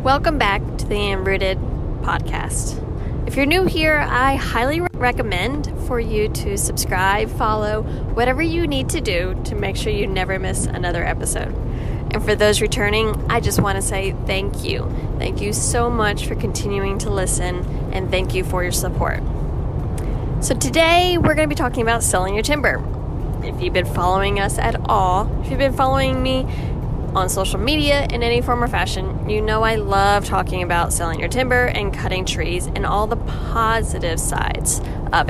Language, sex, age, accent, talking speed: English, female, 10-29, American, 175 wpm